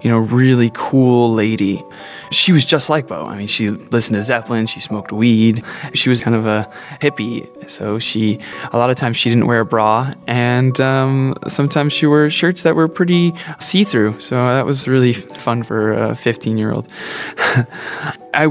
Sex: male